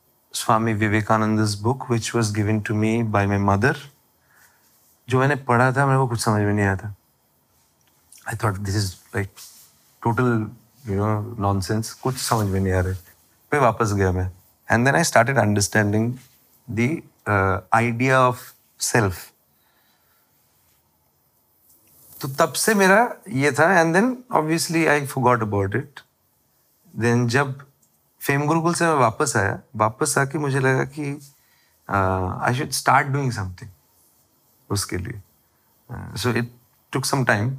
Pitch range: 105-140 Hz